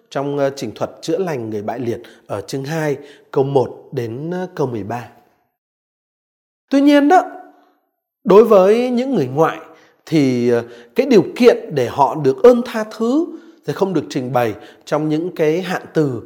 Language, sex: Vietnamese, male